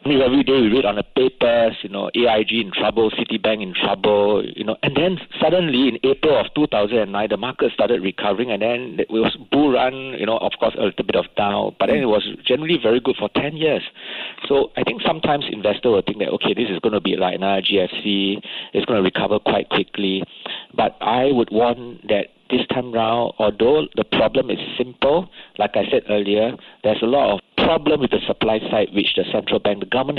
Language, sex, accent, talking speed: English, male, Malaysian, 215 wpm